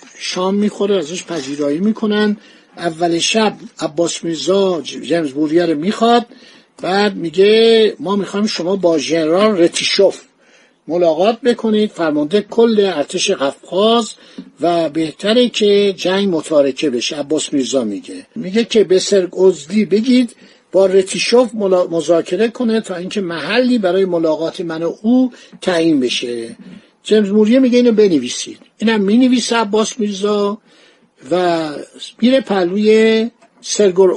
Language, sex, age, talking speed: Persian, male, 60-79, 115 wpm